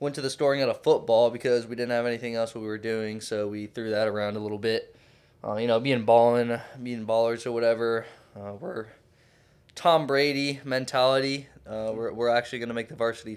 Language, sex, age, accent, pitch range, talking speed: English, male, 20-39, American, 110-135 Hz, 215 wpm